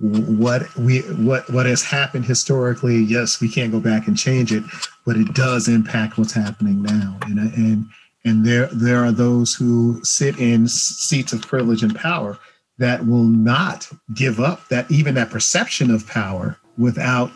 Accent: American